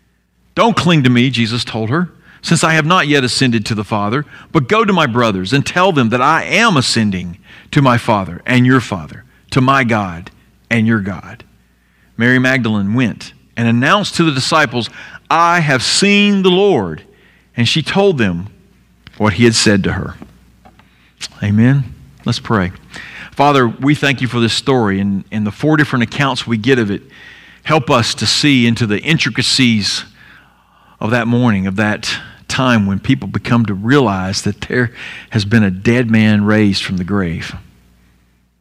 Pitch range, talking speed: 100-135 Hz, 175 wpm